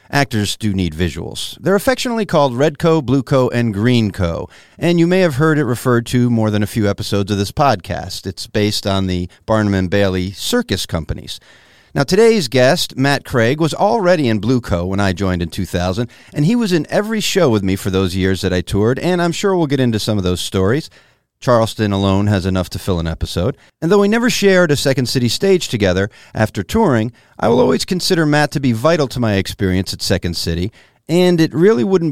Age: 40-59